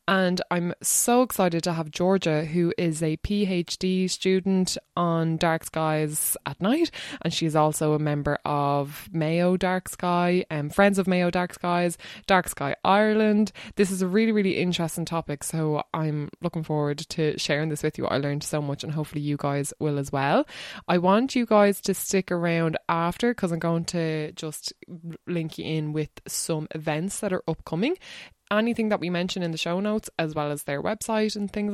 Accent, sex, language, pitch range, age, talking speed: Irish, female, English, 155-200 Hz, 20-39, 185 wpm